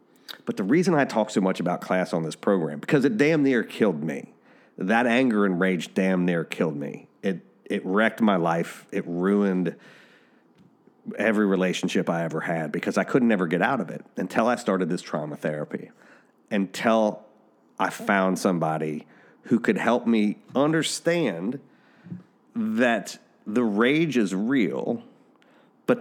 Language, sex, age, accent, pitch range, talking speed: English, male, 40-59, American, 90-110 Hz, 155 wpm